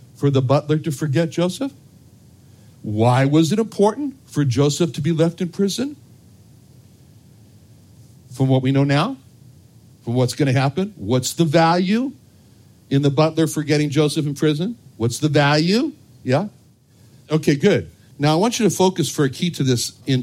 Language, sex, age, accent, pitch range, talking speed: English, male, 60-79, American, 120-165 Hz, 160 wpm